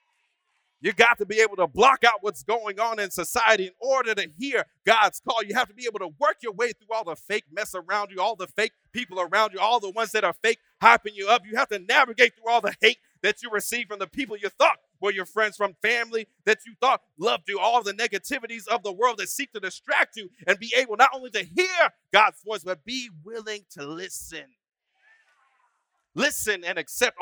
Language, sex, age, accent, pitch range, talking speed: English, male, 40-59, American, 190-245 Hz, 230 wpm